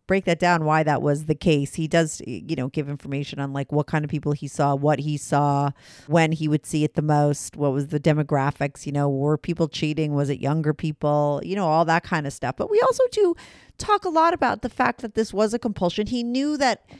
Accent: American